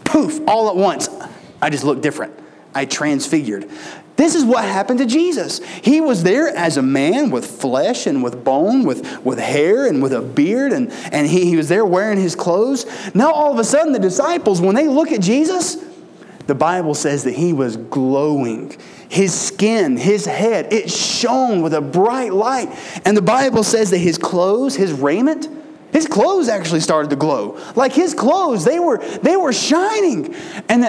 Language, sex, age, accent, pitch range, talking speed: English, male, 30-49, American, 170-270 Hz, 185 wpm